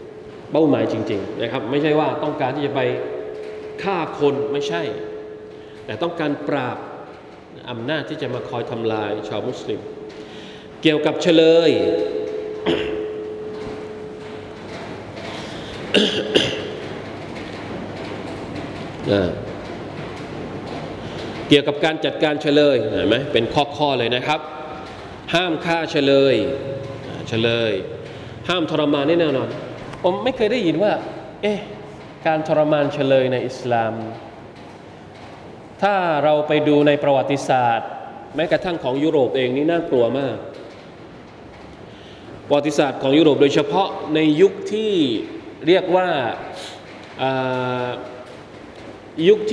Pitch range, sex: 130-185 Hz, male